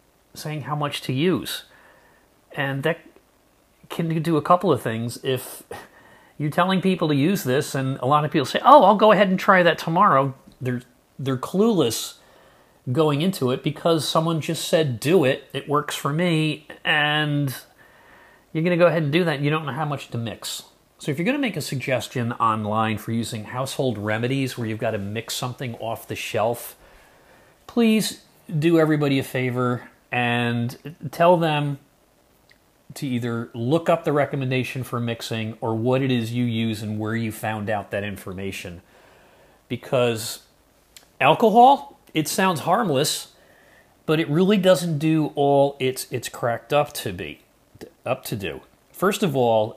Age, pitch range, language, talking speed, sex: 40-59, 115-155 Hz, English, 170 wpm, male